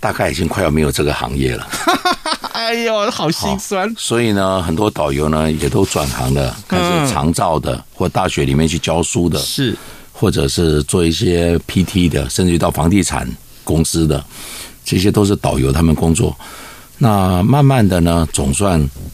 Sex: male